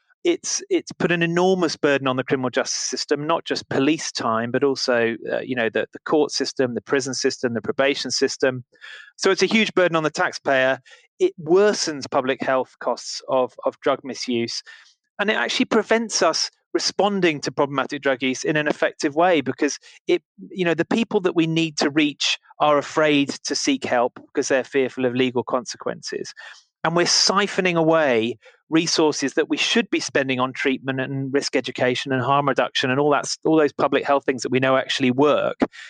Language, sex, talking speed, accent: English, male, 190 wpm, British